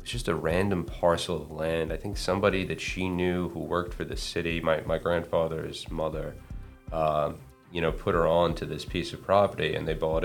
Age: 20-39